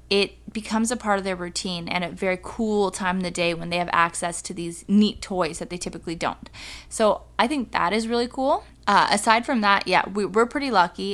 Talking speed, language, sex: 225 wpm, English, female